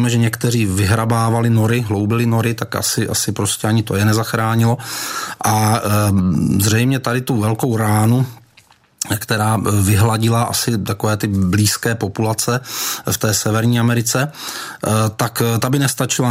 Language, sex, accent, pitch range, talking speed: Czech, male, native, 105-115 Hz, 130 wpm